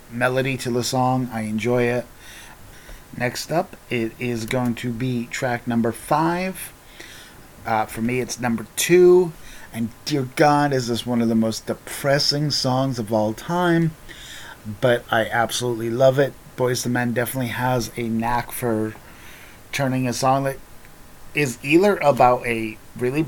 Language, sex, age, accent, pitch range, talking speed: English, male, 30-49, American, 115-135 Hz, 150 wpm